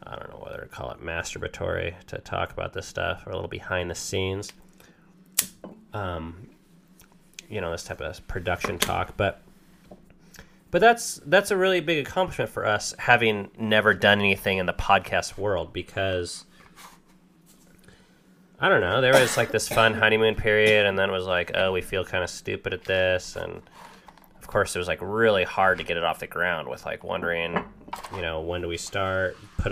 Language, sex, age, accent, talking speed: English, male, 30-49, American, 185 wpm